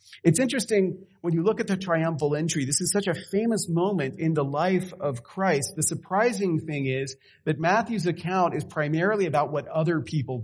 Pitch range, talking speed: 130-180 Hz, 190 wpm